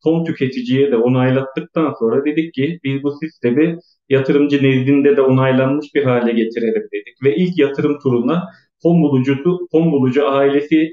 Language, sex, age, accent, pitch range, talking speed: Turkish, male, 40-59, native, 120-160 Hz, 145 wpm